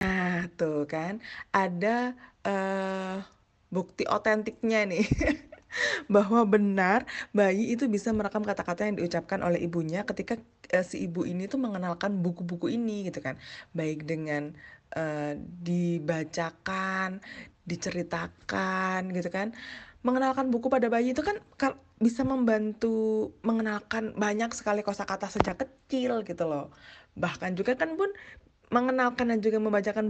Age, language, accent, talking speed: 20-39, Indonesian, native, 125 wpm